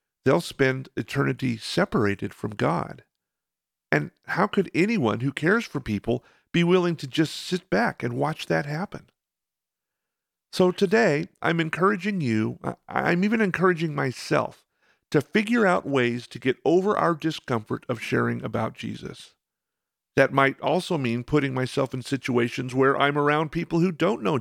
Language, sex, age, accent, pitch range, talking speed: English, male, 50-69, American, 120-170 Hz, 150 wpm